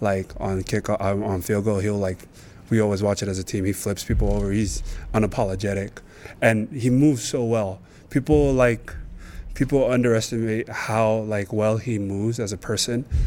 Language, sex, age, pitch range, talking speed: English, male, 20-39, 100-115 Hz, 170 wpm